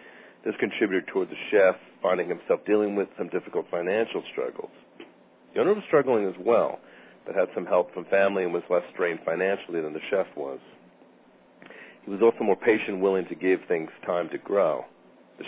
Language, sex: English, male